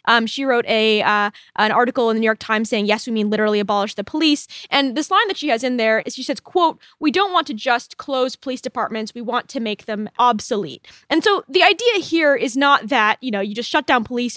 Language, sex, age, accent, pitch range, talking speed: English, female, 20-39, American, 230-295 Hz, 250 wpm